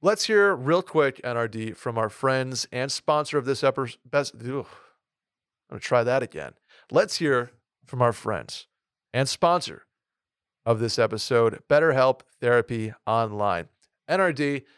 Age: 40-59